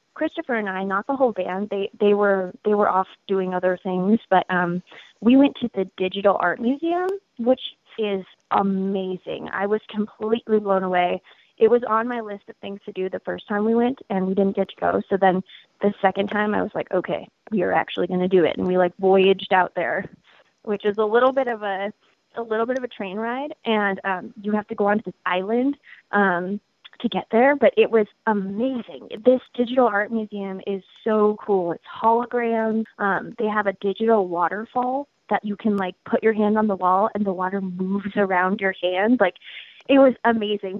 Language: English